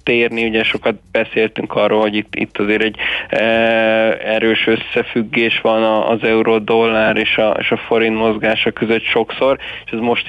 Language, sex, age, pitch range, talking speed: Hungarian, male, 20-39, 110-115 Hz, 155 wpm